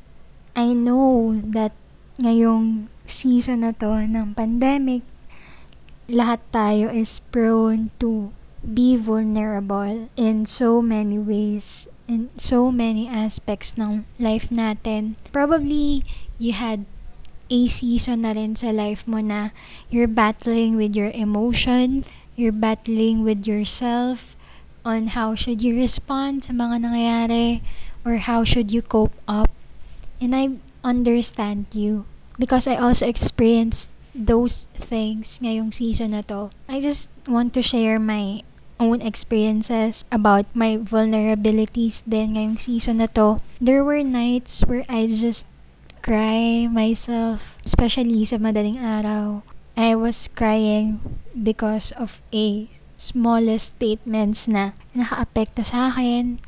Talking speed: 120 wpm